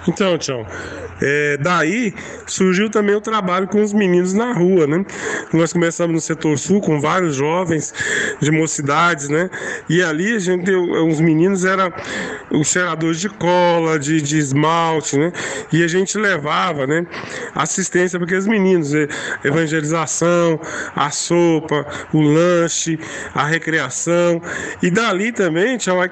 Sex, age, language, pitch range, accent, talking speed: male, 20-39, Portuguese, 160-200 Hz, Brazilian, 140 wpm